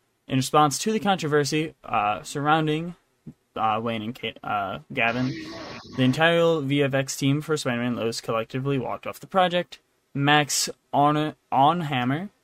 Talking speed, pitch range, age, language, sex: 125 wpm, 125-145 Hz, 20-39, English, male